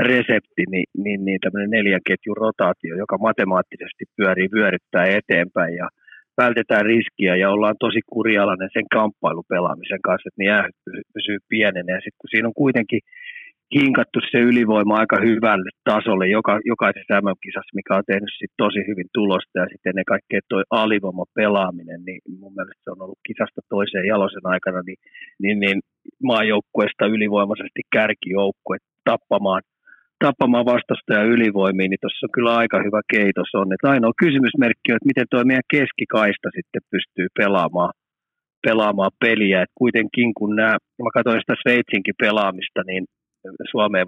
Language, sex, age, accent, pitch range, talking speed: Finnish, male, 30-49, native, 95-115 Hz, 145 wpm